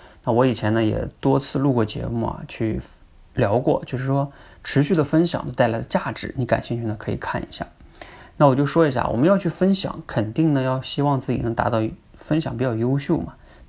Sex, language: male, Chinese